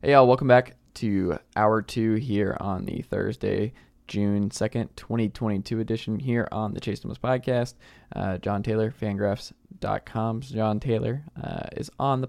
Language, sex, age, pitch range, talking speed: English, male, 20-39, 105-120 Hz, 155 wpm